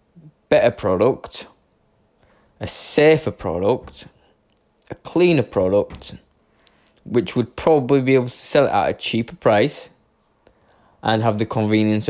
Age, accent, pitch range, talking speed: 20-39, British, 105-135 Hz, 120 wpm